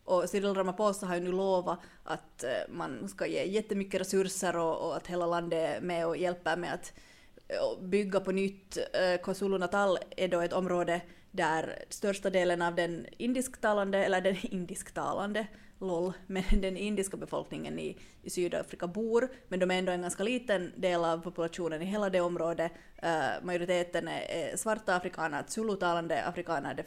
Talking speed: 150 wpm